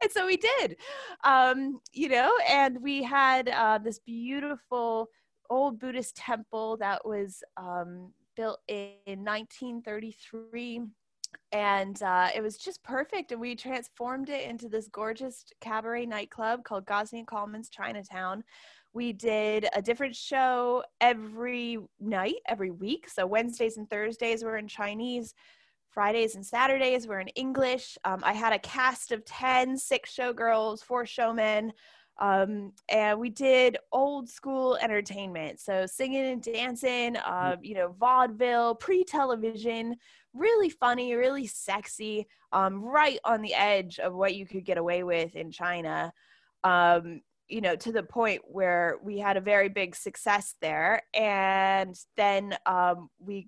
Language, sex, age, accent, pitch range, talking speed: English, female, 20-39, American, 200-255 Hz, 140 wpm